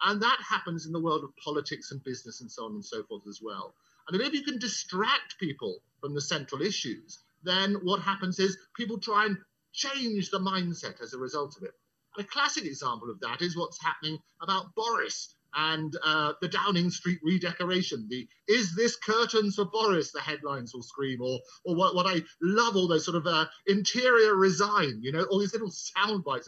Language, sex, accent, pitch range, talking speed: English, male, British, 150-210 Hz, 205 wpm